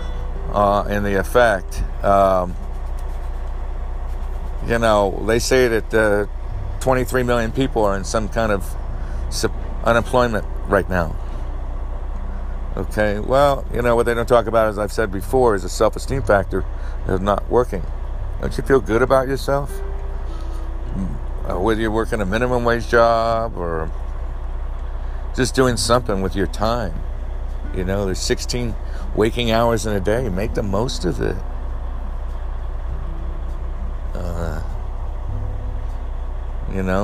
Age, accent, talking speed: 60-79, American, 130 wpm